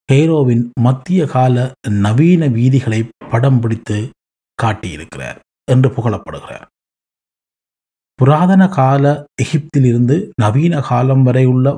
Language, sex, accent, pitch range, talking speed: Tamil, male, native, 110-145 Hz, 80 wpm